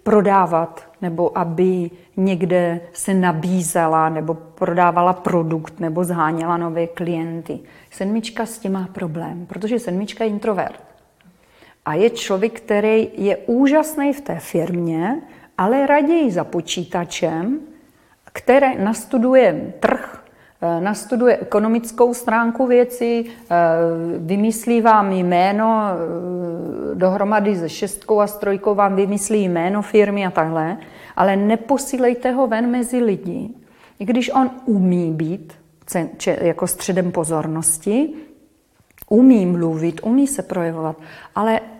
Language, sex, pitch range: Czech, female, 175-235 Hz